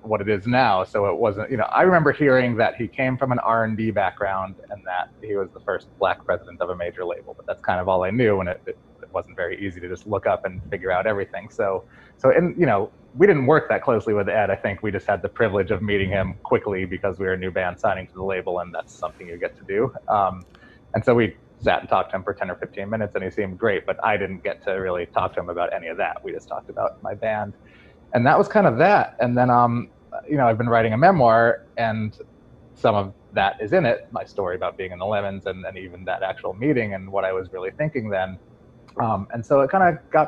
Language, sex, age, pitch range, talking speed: English, male, 30-49, 100-130 Hz, 265 wpm